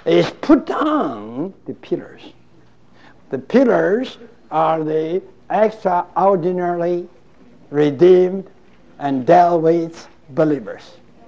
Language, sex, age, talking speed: English, male, 60-79, 80 wpm